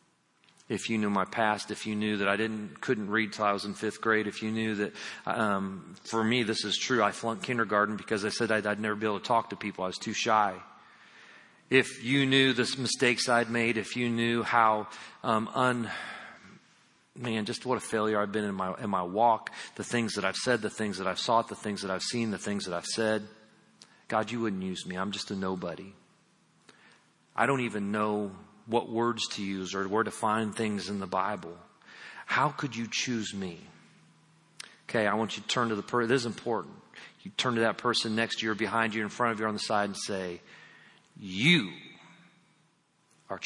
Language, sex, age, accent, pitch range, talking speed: English, male, 40-59, American, 105-125 Hz, 220 wpm